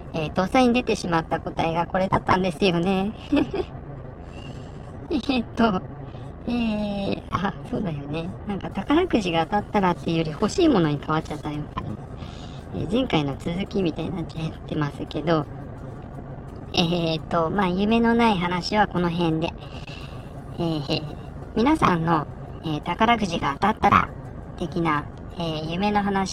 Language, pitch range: Japanese, 150-205 Hz